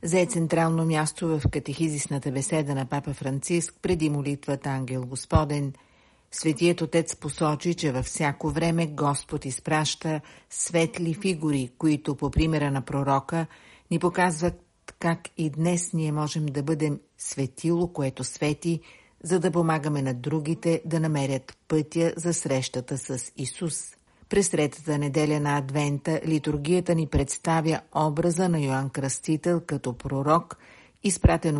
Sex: female